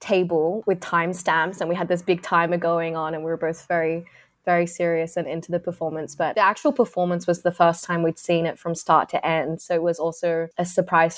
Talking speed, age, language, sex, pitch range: 230 wpm, 20-39, English, female, 165-180 Hz